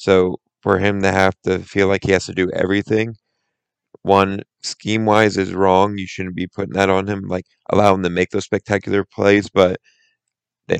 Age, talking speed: 30-49, 195 wpm